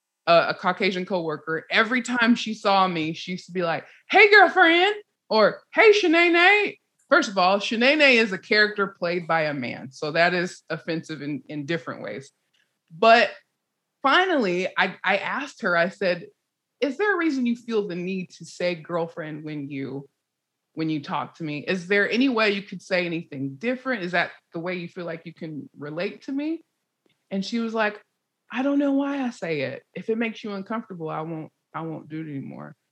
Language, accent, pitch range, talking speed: English, American, 170-245 Hz, 195 wpm